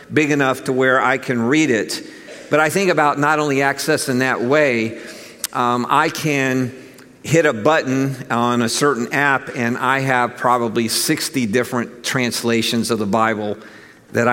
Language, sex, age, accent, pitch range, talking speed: English, male, 50-69, American, 120-145 Hz, 165 wpm